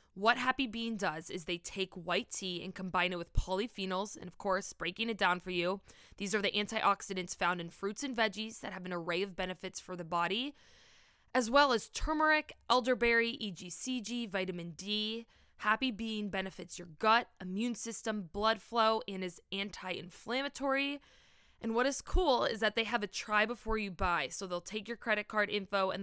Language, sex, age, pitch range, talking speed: English, female, 20-39, 190-235 Hz, 185 wpm